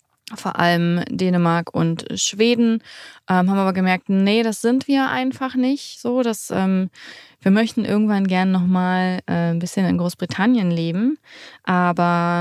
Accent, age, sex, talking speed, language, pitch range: German, 20-39, female, 150 wpm, German, 175-225 Hz